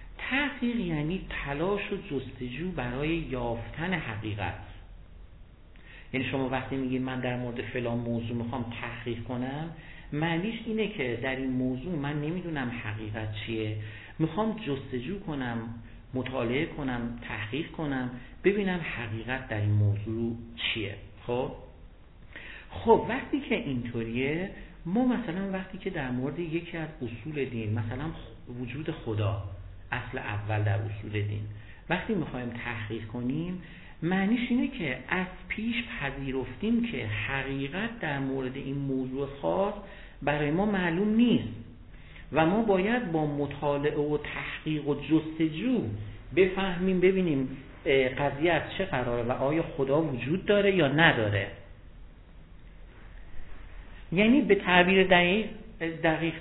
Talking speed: 120 wpm